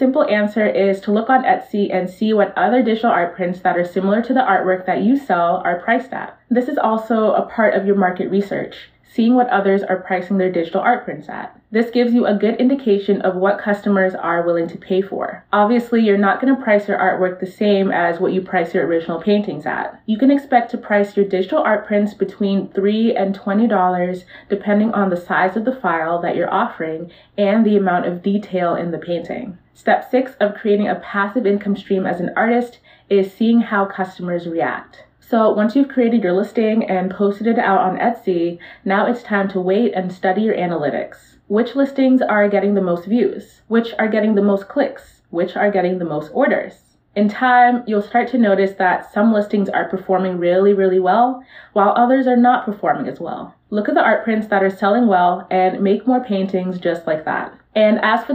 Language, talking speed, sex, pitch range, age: English, 210 wpm, female, 185-230 Hz, 20-39